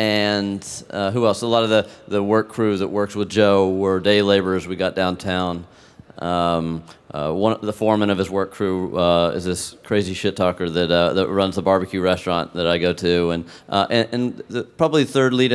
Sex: male